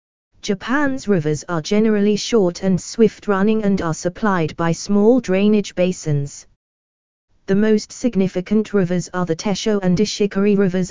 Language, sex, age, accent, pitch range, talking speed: English, female, 20-39, British, 160-210 Hz, 130 wpm